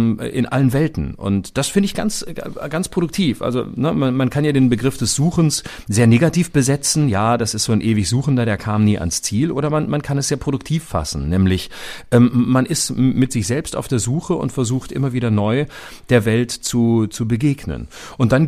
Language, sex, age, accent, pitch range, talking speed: German, male, 40-59, German, 105-145 Hz, 215 wpm